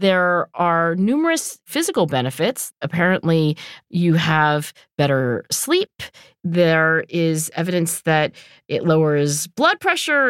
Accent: American